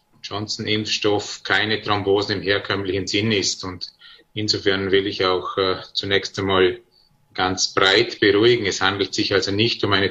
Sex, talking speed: male, 150 wpm